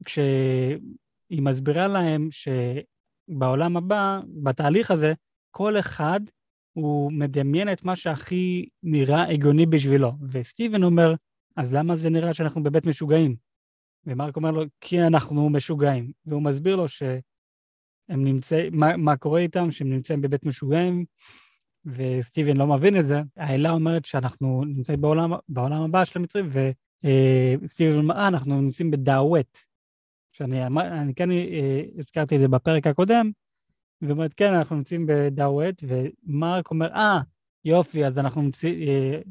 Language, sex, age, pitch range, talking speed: Hebrew, male, 30-49, 135-165 Hz, 135 wpm